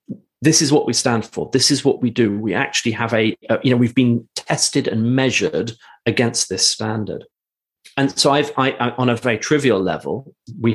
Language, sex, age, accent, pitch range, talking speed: English, male, 40-59, British, 100-130 Hz, 205 wpm